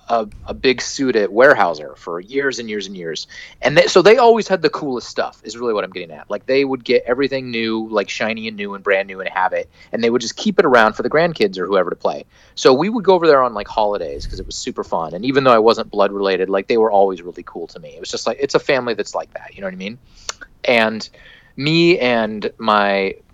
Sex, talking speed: male, 270 wpm